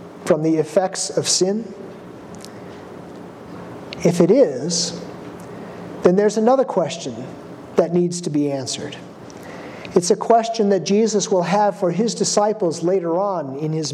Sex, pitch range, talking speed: male, 160-200 Hz, 135 wpm